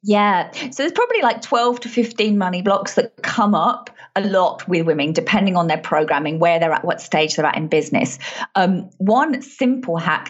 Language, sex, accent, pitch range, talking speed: English, female, British, 170-225 Hz, 200 wpm